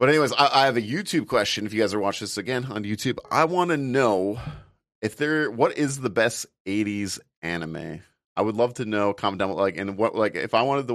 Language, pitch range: English, 95-125 Hz